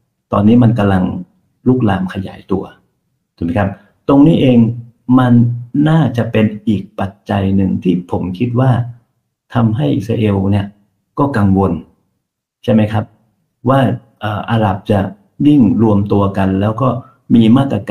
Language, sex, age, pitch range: Thai, male, 60-79, 100-125 Hz